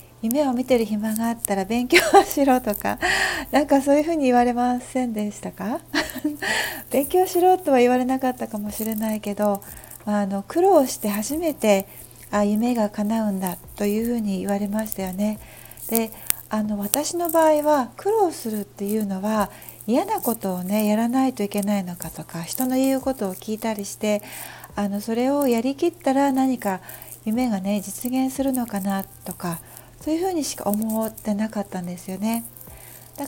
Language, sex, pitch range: Japanese, female, 200-265 Hz